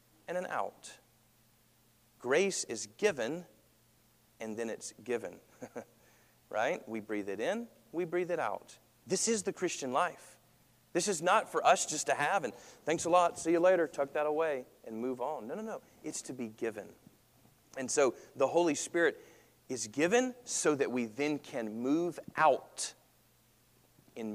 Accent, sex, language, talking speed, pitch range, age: American, male, English, 165 wpm, 115-155 Hz, 40-59